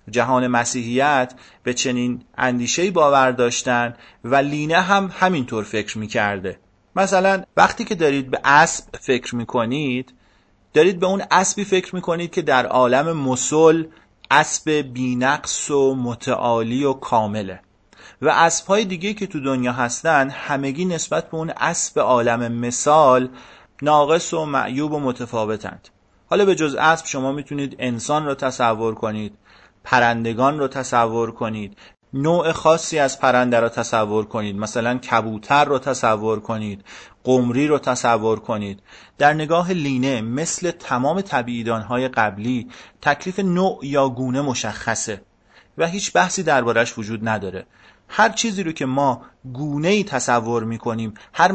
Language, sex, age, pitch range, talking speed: Persian, male, 30-49, 115-150 Hz, 140 wpm